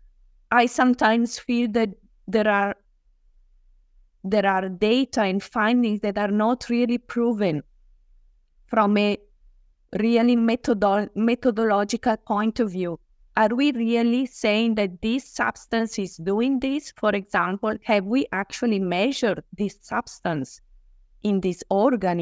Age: 20-39